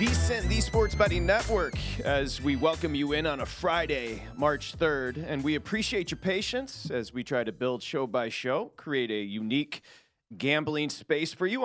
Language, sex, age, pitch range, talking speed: English, male, 30-49, 125-155 Hz, 180 wpm